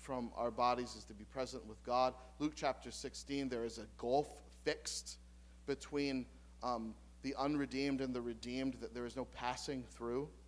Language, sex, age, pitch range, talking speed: English, male, 40-59, 110-160 Hz, 170 wpm